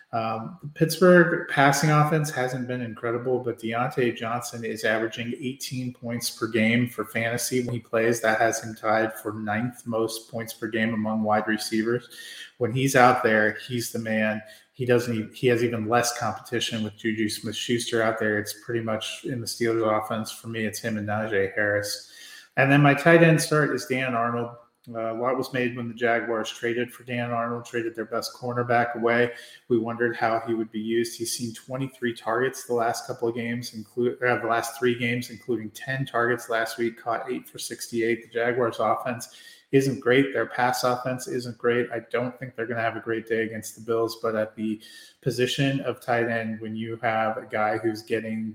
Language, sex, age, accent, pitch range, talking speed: English, male, 30-49, American, 110-125 Hz, 200 wpm